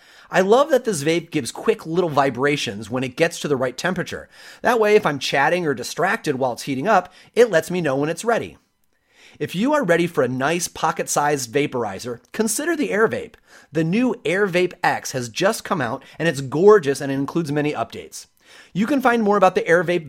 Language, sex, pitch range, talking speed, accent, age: English, male, 125-180 Hz, 205 wpm, American, 30-49